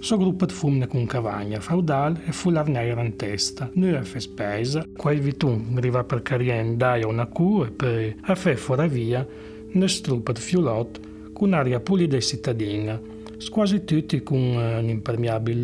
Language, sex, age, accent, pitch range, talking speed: Italian, male, 40-59, native, 110-150 Hz, 175 wpm